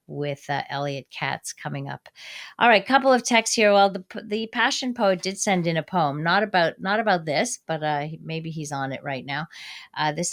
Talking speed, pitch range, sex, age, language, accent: 215 wpm, 145-185 Hz, female, 40-59, English, American